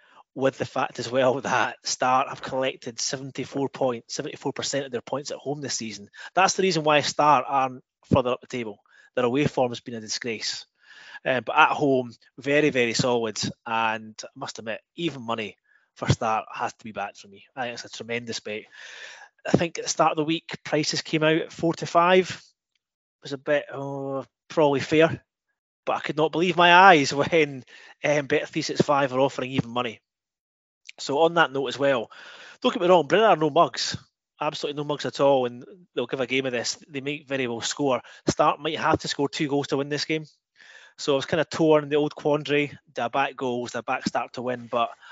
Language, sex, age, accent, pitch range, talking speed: English, male, 20-39, British, 120-150 Hz, 210 wpm